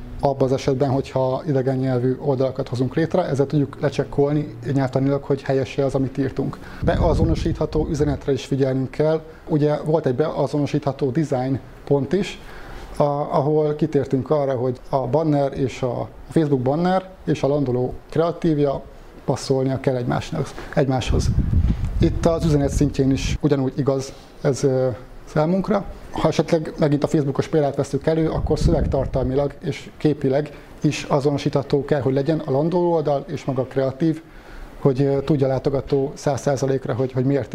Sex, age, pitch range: male, 30-49, 135-155 Hz